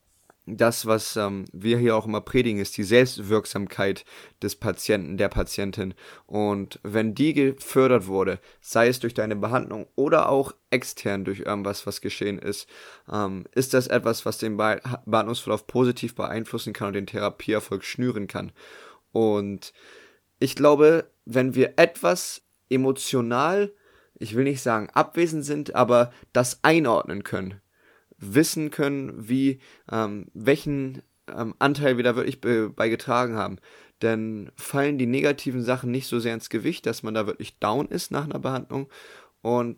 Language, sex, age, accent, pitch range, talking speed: German, male, 20-39, German, 105-130 Hz, 150 wpm